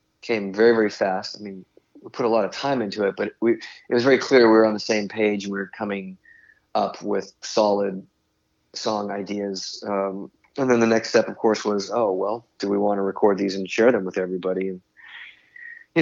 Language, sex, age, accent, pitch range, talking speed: English, male, 30-49, American, 95-110 Hz, 220 wpm